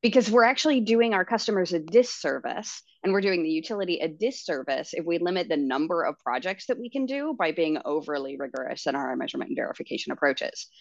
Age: 30-49